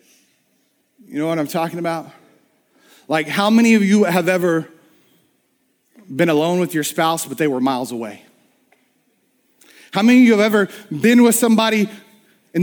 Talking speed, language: 155 wpm, English